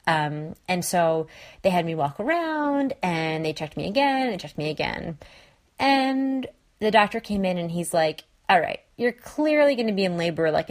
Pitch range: 160-225 Hz